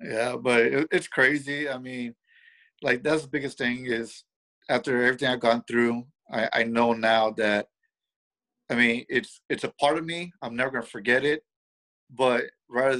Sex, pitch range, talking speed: male, 115-130 Hz, 170 wpm